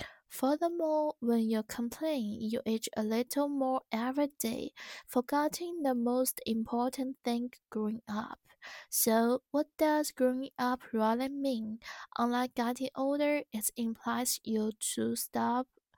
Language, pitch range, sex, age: Chinese, 235-270 Hz, female, 20-39